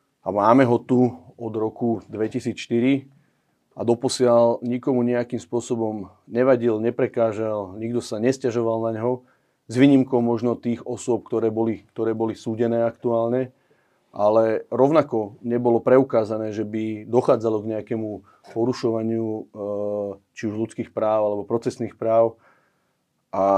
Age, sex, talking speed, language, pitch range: 30-49, male, 120 wpm, Slovak, 105-120 Hz